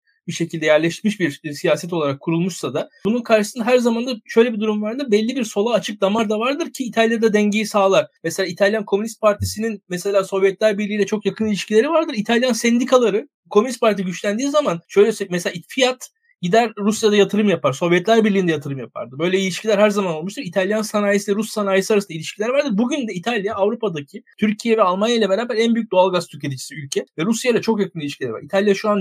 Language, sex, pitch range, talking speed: Turkish, male, 180-225 Hz, 195 wpm